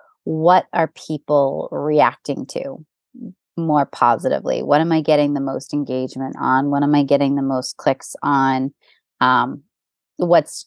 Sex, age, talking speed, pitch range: female, 20-39, 140 wpm, 140-165 Hz